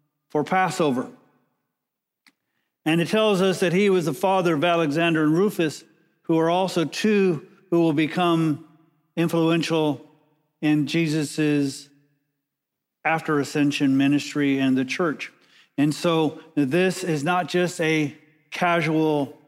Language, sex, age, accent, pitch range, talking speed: English, male, 50-69, American, 150-175 Hz, 120 wpm